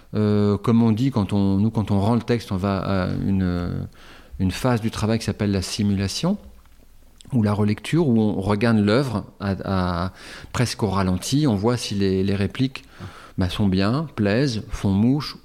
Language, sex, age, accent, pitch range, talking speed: French, male, 40-59, French, 95-125 Hz, 185 wpm